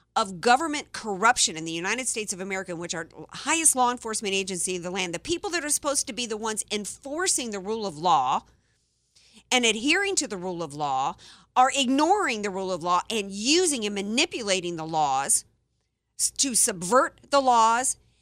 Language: English